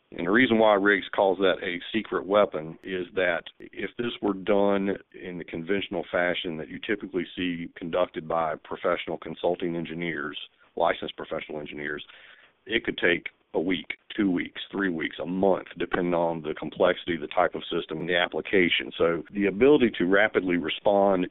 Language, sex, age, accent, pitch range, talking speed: English, male, 50-69, American, 85-100 Hz, 170 wpm